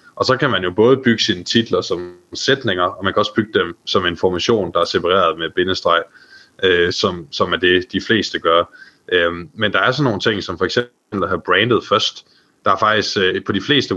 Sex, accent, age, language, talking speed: male, native, 20-39, Danish, 230 wpm